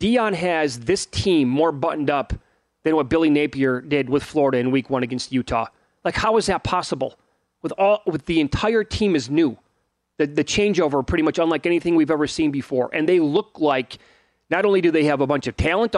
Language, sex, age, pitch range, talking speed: English, male, 30-49, 135-165 Hz, 210 wpm